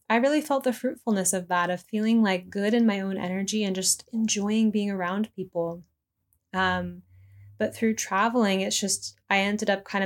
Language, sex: English, female